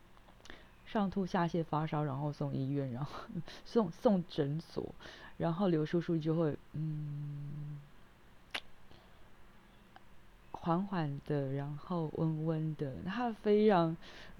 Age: 20-39